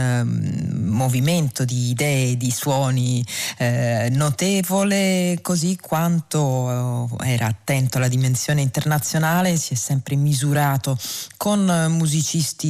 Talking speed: 100 wpm